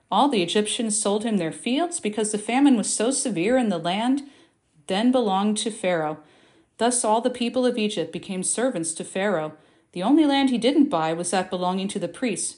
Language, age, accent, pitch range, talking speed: English, 40-59, American, 180-245 Hz, 200 wpm